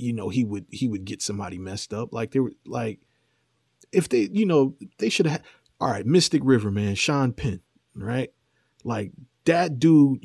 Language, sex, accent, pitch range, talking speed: English, male, American, 115-150 Hz, 185 wpm